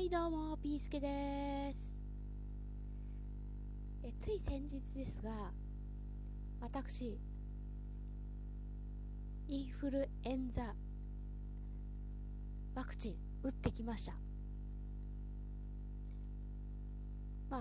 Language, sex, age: Japanese, female, 20-39